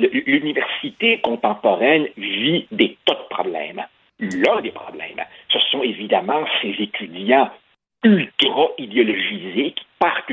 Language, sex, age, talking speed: French, male, 60-79, 105 wpm